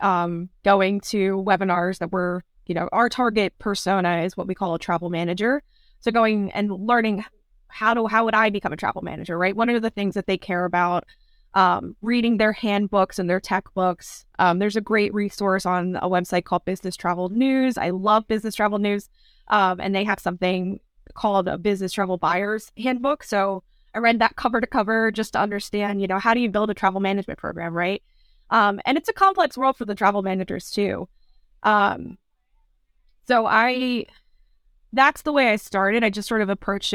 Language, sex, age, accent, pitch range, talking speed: English, female, 20-39, American, 190-225 Hz, 195 wpm